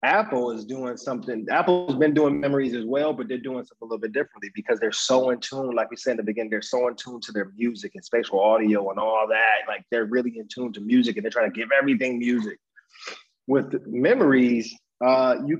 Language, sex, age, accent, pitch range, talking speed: English, male, 20-39, American, 120-145 Hz, 235 wpm